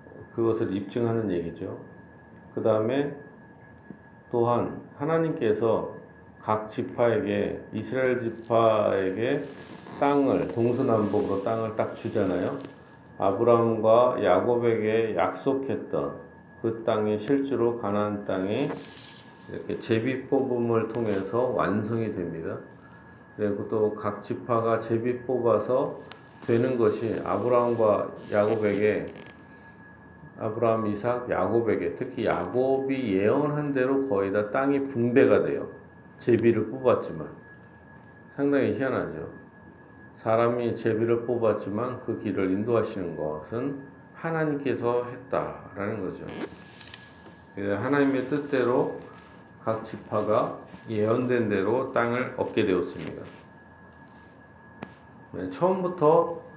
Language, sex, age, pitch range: Korean, male, 40-59, 105-125 Hz